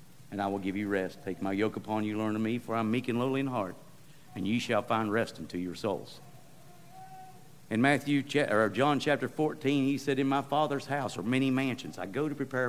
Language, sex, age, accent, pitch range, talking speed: English, male, 50-69, American, 120-155 Hz, 235 wpm